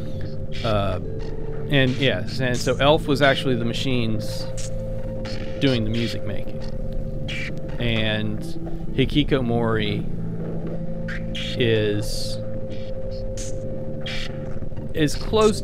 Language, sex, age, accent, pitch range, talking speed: English, male, 30-49, American, 105-125 Hz, 75 wpm